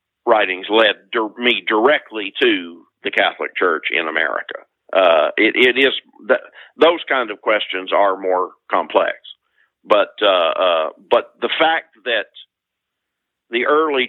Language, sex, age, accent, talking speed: English, male, 50-69, American, 135 wpm